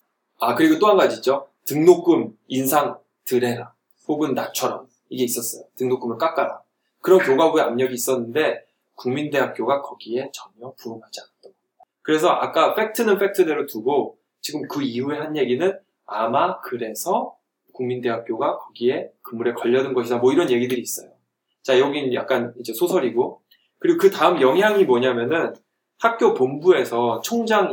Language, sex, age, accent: Korean, male, 20-39, native